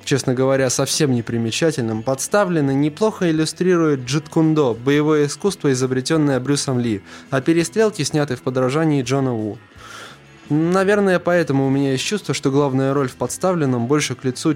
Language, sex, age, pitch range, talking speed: Russian, male, 20-39, 125-155 Hz, 140 wpm